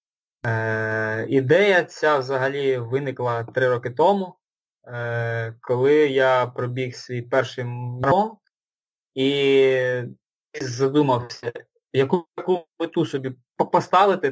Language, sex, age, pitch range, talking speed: Ukrainian, male, 20-39, 130-160 Hz, 90 wpm